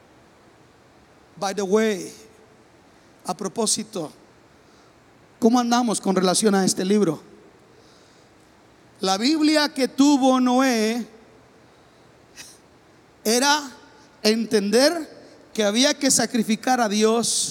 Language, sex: Spanish, male